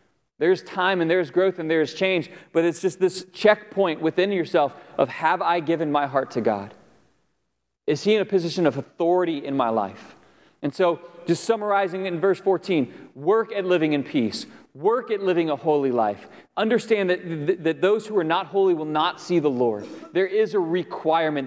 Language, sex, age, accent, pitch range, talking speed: English, male, 30-49, American, 165-235 Hz, 190 wpm